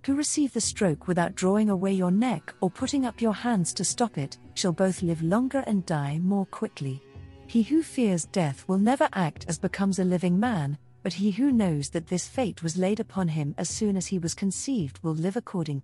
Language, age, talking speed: English, 40-59, 215 wpm